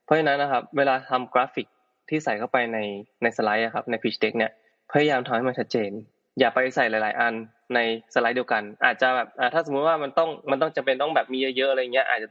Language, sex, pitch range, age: Thai, male, 115-135 Hz, 20-39